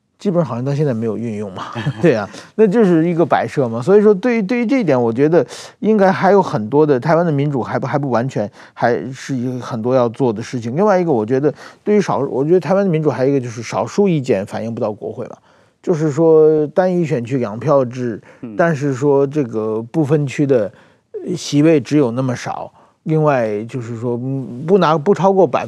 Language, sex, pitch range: Chinese, male, 120-170 Hz